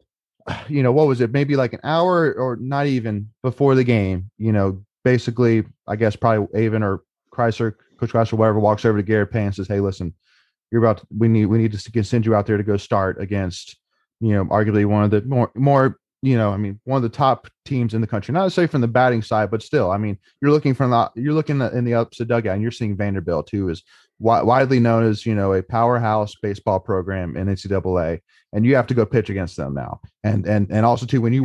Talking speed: 240 wpm